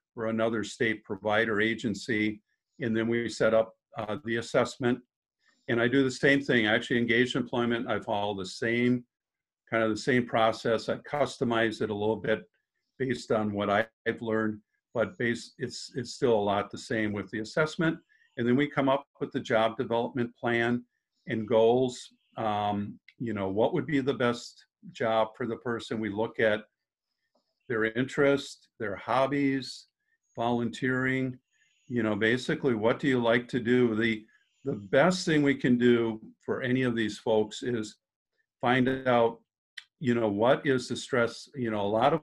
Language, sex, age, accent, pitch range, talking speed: English, male, 50-69, American, 110-135 Hz, 175 wpm